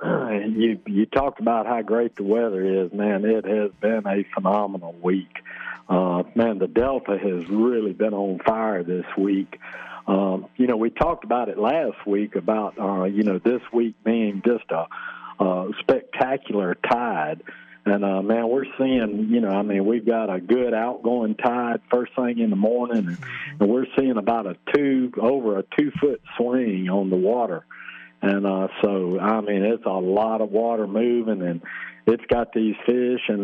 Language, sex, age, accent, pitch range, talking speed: English, male, 50-69, American, 100-120 Hz, 185 wpm